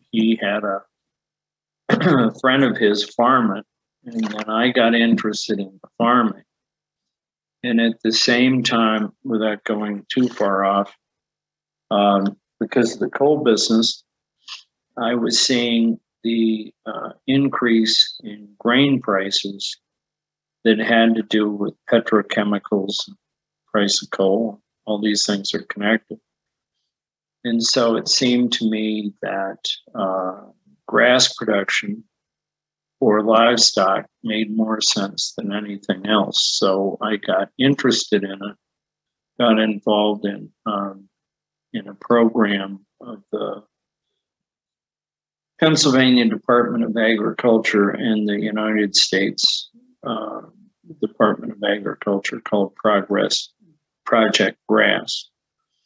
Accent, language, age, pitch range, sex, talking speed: American, English, 50-69, 105-120 Hz, male, 110 wpm